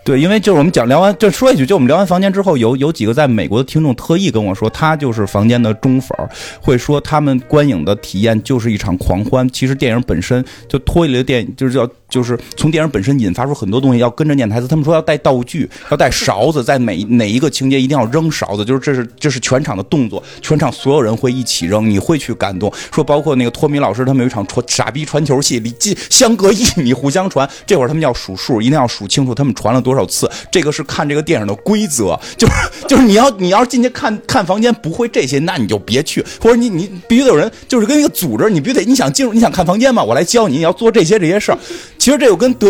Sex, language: male, Chinese